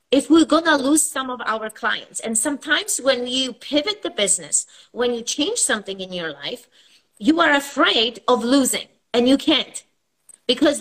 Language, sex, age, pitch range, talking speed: German, female, 30-49, 225-285 Hz, 170 wpm